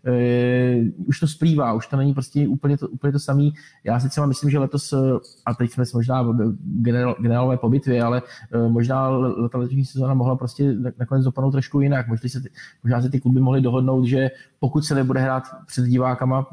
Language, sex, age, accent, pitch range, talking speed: Czech, male, 20-39, native, 120-135 Hz, 190 wpm